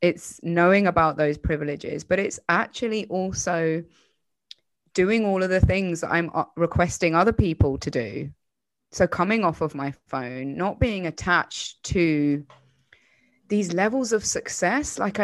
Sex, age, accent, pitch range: female, 20-39, British, 155-200 Hz